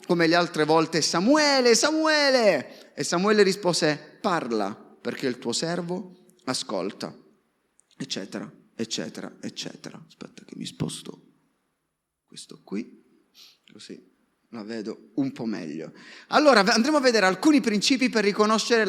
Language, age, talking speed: Italian, 30-49, 120 wpm